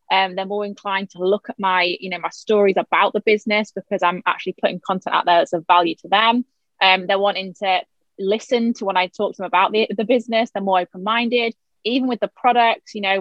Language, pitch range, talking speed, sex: English, 185-220 Hz, 230 wpm, female